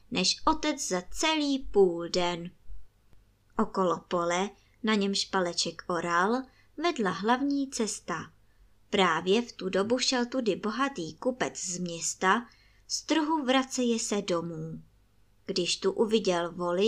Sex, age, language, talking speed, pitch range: male, 20-39, Czech, 120 wpm, 175-270 Hz